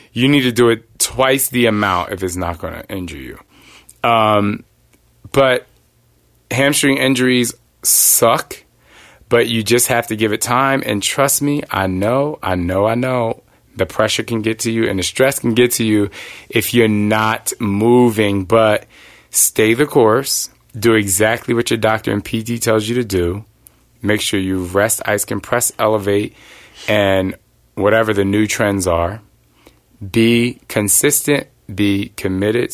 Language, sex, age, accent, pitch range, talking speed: English, male, 30-49, American, 100-120 Hz, 160 wpm